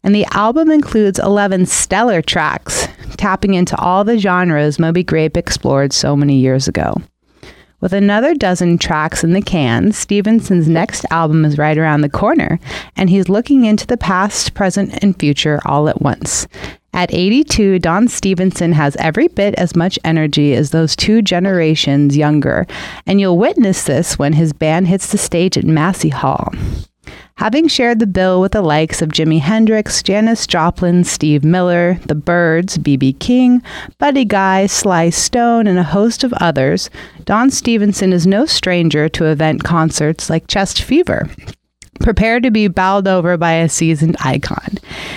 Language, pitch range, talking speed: English, 160-210 Hz, 160 wpm